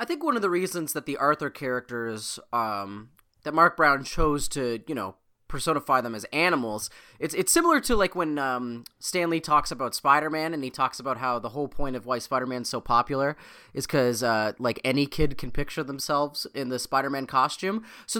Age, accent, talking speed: 30-49, American, 200 wpm